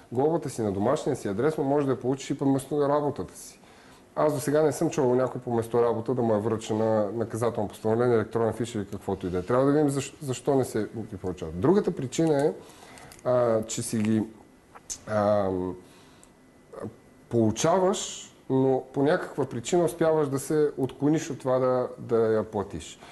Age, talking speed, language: 30-49, 185 wpm, Bulgarian